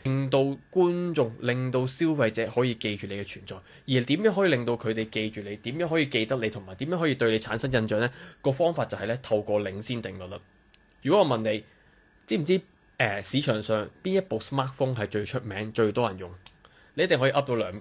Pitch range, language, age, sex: 110-145 Hz, Chinese, 20-39, male